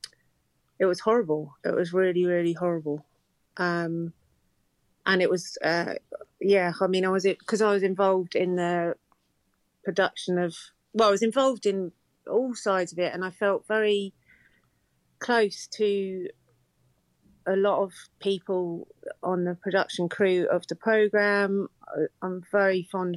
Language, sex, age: English, female, 30-49